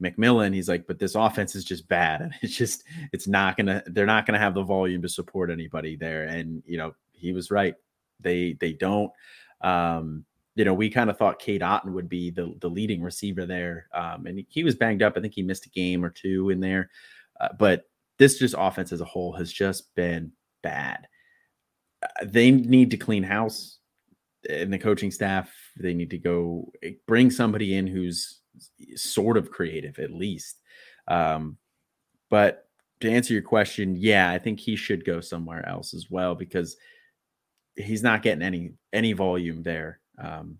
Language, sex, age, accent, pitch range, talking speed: English, male, 30-49, American, 90-105 Hz, 185 wpm